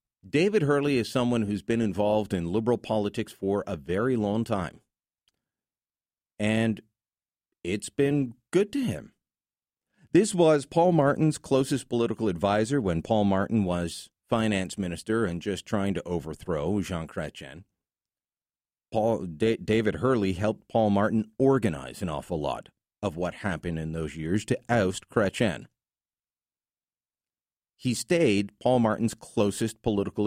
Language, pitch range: English, 100-125 Hz